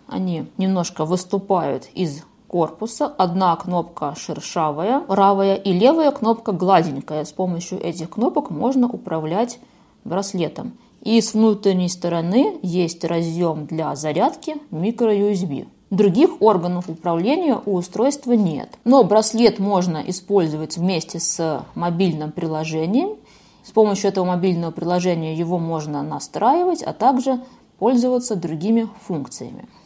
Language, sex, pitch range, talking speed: Russian, female, 170-235 Hz, 115 wpm